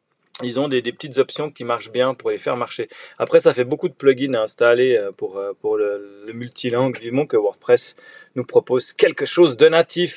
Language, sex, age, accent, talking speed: French, male, 30-49, French, 205 wpm